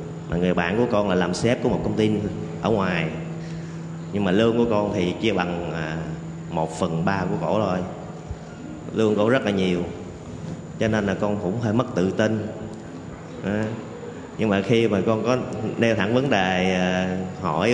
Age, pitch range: 30-49, 90-120 Hz